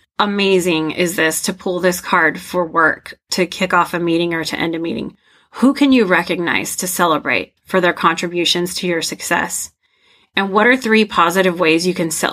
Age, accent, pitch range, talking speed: 30-49, American, 170-200 Hz, 190 wpm